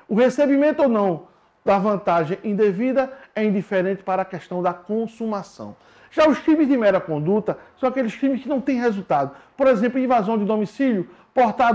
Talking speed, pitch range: 170 wpm, 200-265 Hz